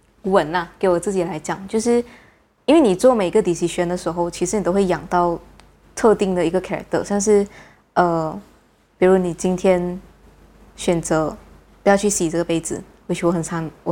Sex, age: female, 20-39